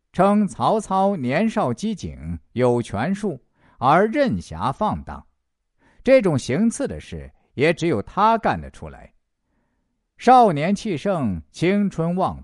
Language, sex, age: Chinese, male, 50-69